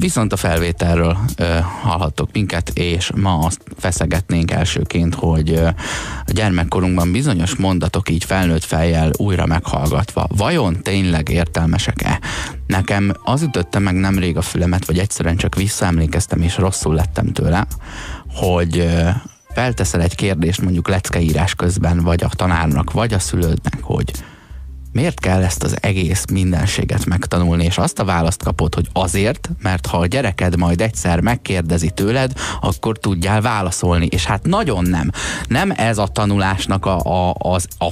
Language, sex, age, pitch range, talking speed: Hungarian, male, 20-39, 85-100 Hz, 140 wpm